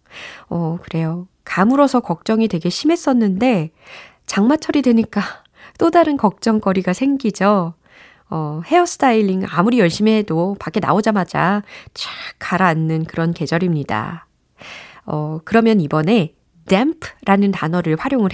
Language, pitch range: Korean, 170-250 Hz